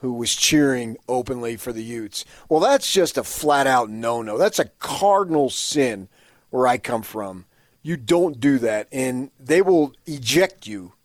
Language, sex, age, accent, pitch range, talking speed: English, male, 40-59, American, 100-140 Hz, 165 wpm